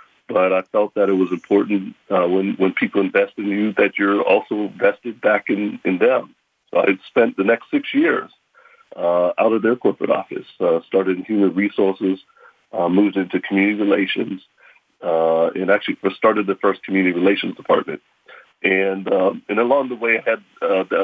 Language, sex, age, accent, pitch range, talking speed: English, male, 40-59, American, 95-110 Hz, 180 wpm